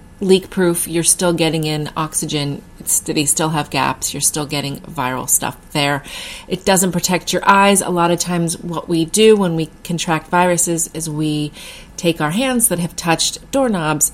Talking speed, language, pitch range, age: 175 wpm, English, 150-180 Hz, 30-49